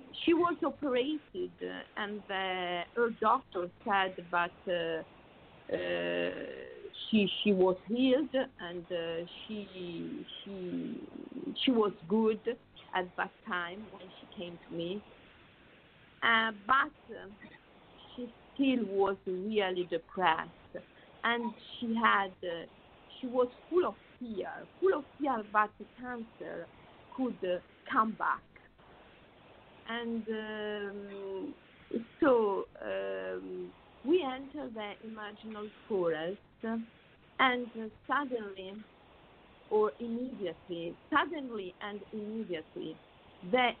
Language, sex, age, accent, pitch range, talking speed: Italian, female, 50-69, native, 185-245 Hz, 105 wpm